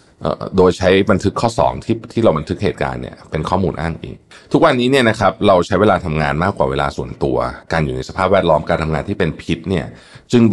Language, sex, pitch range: Thai, male, 75-100 Hz